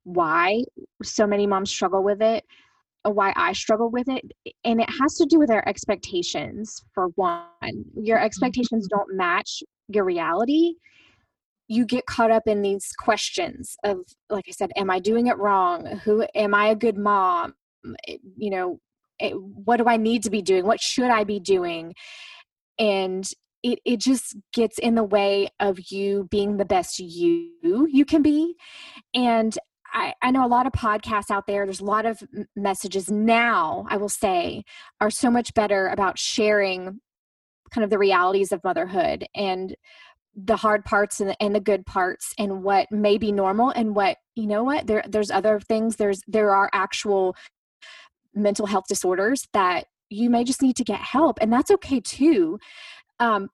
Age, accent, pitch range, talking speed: 20-39, American, 200-260 Hz, 170 wpm